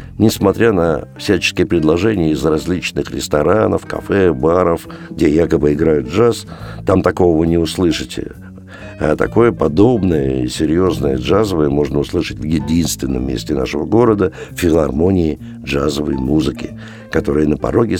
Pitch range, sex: 80-120 Hz, male